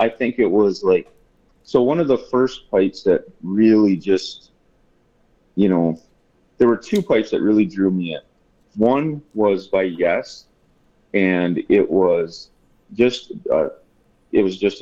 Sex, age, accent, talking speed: male, 40-59, American, 150 wpm